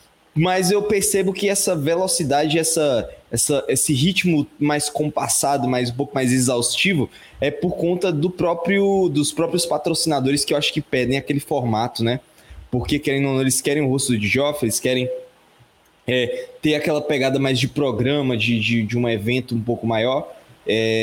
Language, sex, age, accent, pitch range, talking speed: Portuguese, male, 20-39, Brazilian, 125-170 Hz, 170 wpm